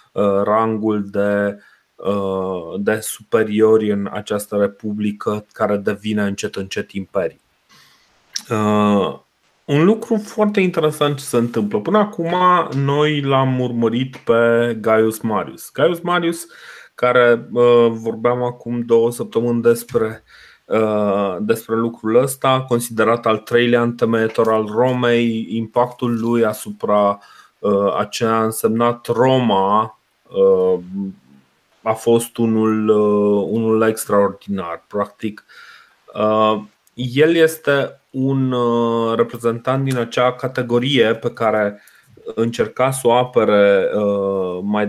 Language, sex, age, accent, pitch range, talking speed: Romanian, male, 30-49, native, 105-125 Hz, 95 wpm